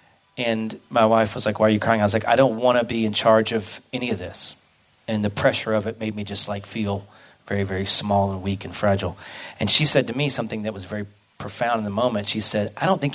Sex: male